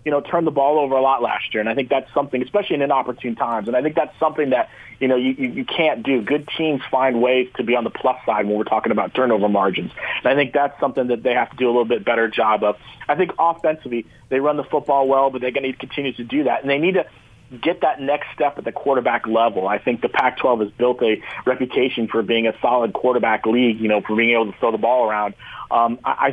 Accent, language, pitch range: American, English, 120-140 Hz